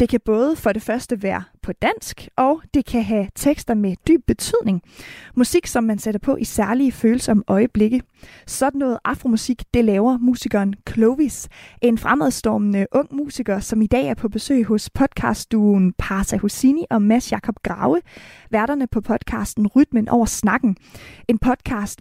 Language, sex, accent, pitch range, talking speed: Danish, female, native, 215-265 Hz, 160 wpm